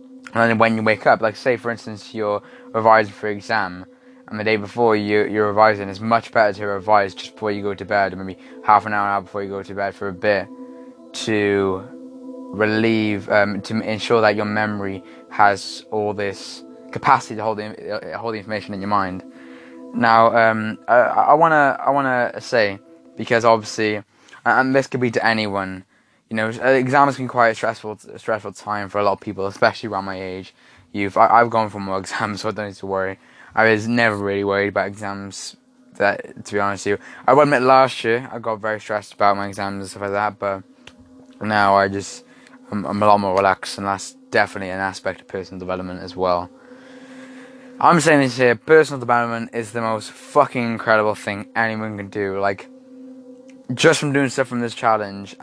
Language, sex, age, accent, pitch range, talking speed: English, male, 10-29, British, 100-120 Hz, 200 wpm